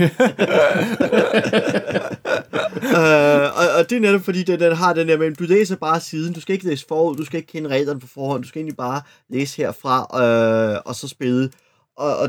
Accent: native